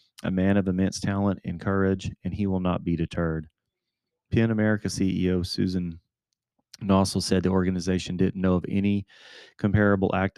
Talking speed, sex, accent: 155 wpm, male, American